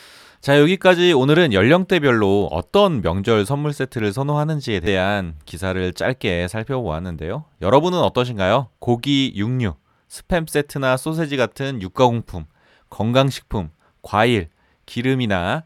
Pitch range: 90-140 Hz